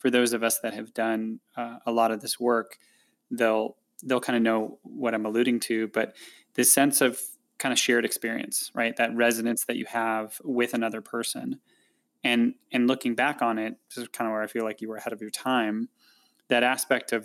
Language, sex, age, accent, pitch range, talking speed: English, male, 20-39, American, 115-130 Hz, 215 wpm